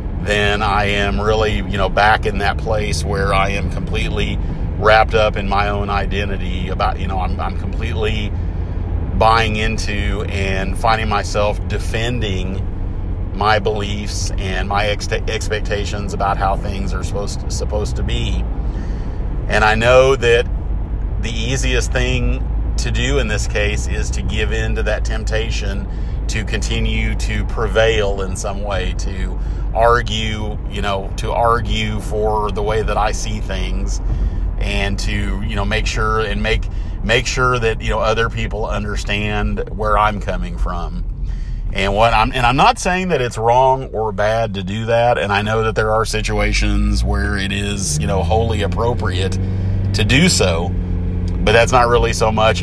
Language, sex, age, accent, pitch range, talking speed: English, male, 40-59, American, 90-110 Hz, 165 wpm